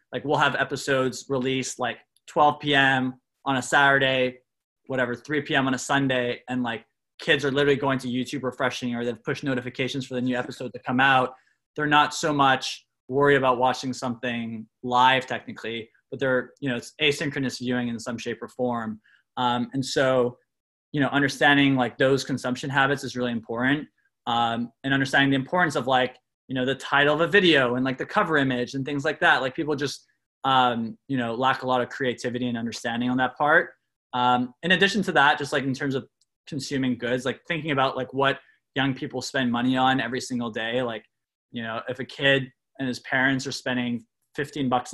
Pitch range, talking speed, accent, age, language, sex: 125-135 Hz, 200 wpm, American, 20-39, English, male